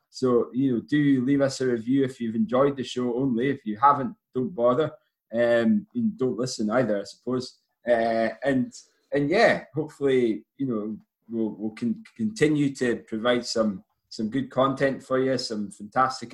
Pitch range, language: 115-145 Hz, English